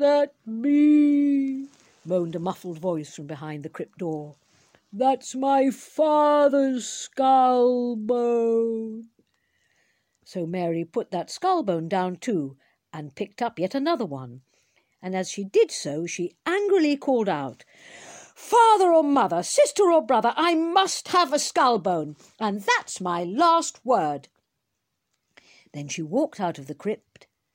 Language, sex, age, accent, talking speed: English, female, 50-69, British, 135 wpm